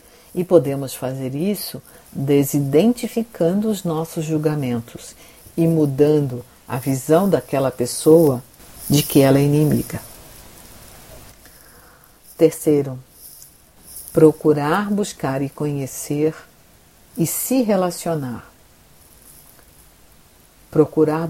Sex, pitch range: female, 135-170 Hz